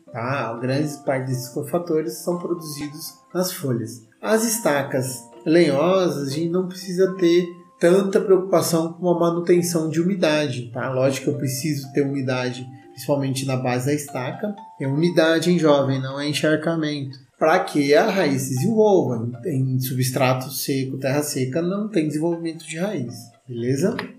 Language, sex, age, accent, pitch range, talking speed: Portuguese, male, 30-49, Brazilian, 135-175 Hz, 150 wpm